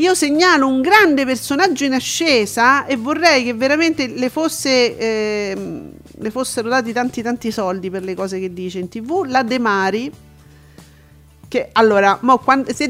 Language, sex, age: Italian, female, 40-59